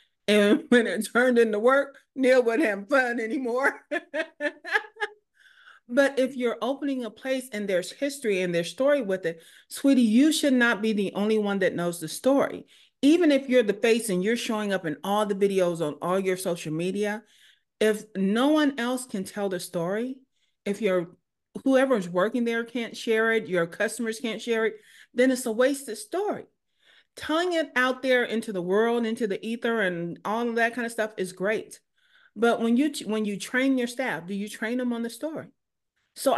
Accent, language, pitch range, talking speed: American, English, 205-260 Hz, 190 wpm